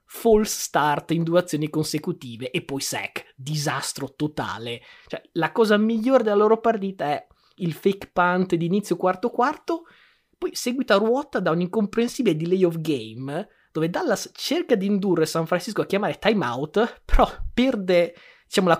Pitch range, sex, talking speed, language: 145-190 Hz, male, 155 wpm, Italian